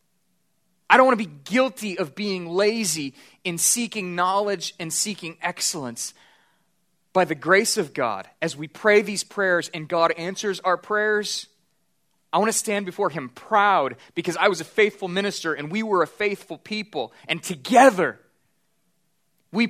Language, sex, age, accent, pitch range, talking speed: English, male, 30-49, American, 175-220 Hz, 160 wpm